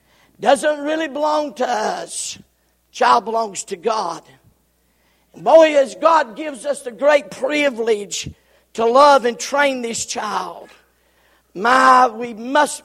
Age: 50-69